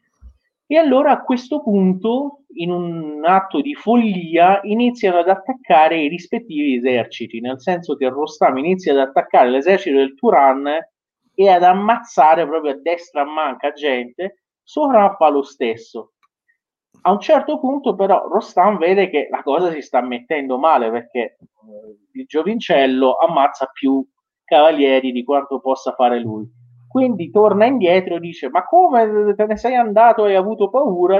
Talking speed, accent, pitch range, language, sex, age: 145 wpm, native, 130-225 Hz, Italian, male, 30-49